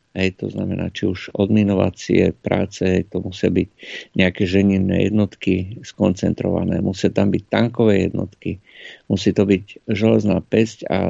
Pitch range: 95-110 Hz